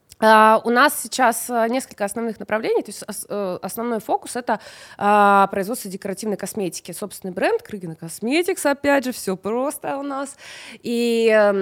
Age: 20-39